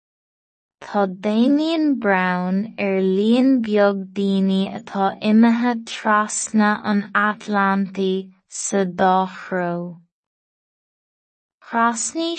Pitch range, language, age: 190-225 Hz, English, 20-39